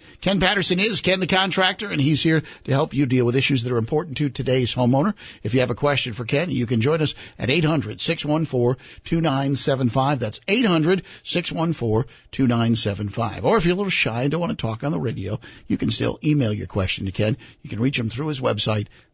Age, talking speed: 50-69, 205 wpm